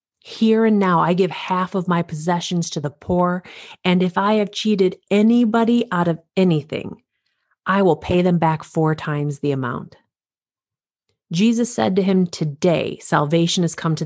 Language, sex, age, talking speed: English, female, 30-49, 165 wpm